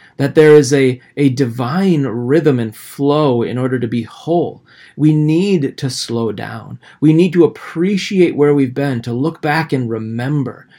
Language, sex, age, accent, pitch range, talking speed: English, male, 30-49, American, 125-150 Hz, 170 wpm